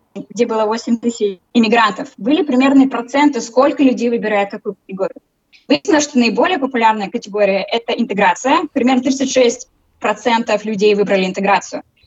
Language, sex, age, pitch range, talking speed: Russian, female, 20-39, 200-255 Hz, 130 wpm